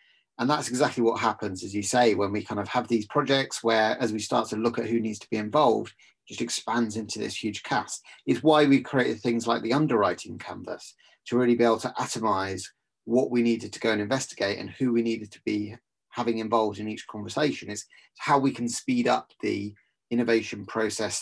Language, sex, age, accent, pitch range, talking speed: English, male, 30-49, British, 105-125 Hz, 210 wpm